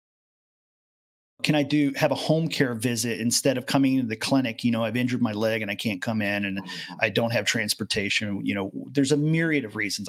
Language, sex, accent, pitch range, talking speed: English, male, American, 120-150 Hz, 220 wpm